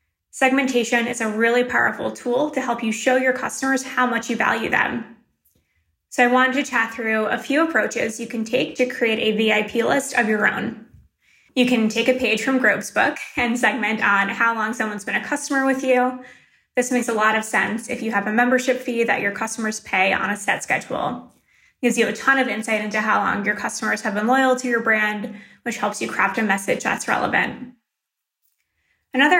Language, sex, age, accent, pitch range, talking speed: English, female, 20-39, American, 215-255 Hz, 210 wpm